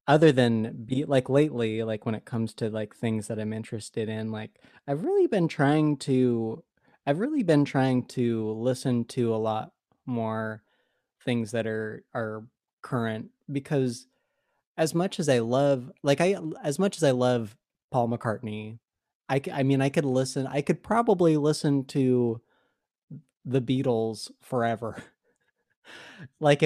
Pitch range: 115-150 Hz